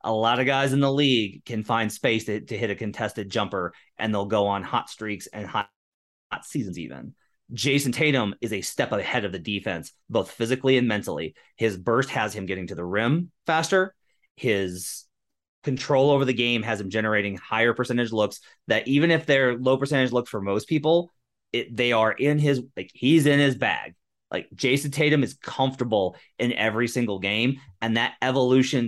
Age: 30-49